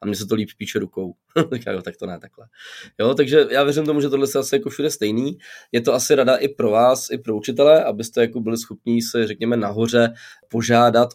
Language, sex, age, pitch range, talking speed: Czech, male, 20-39, 105-135 Hz, 225 wpm